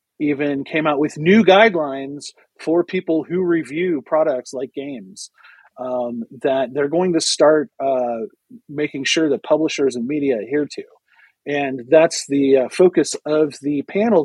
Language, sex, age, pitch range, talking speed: English, male, 40-59, 135-160 Hz, 150 wpm